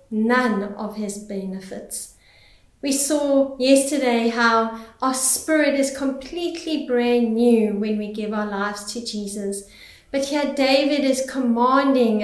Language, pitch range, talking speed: English, 215-275 Hz, 125 wpm